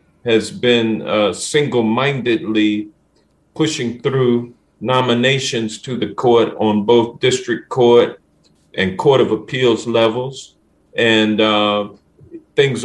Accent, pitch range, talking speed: American, 110-140 Hz, 105 wpm